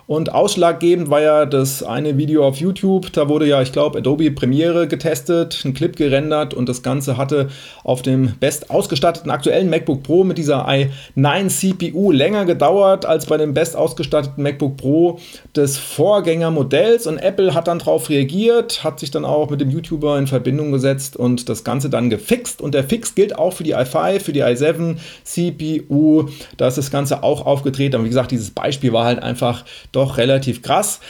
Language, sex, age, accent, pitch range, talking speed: German, male, 30-49, German, 135-165 Hz, 185 wpm